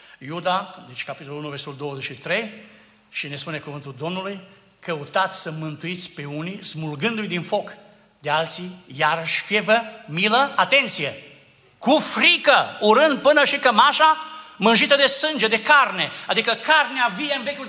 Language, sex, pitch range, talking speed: Romanian, male, 145-220 Hz, 140 wpm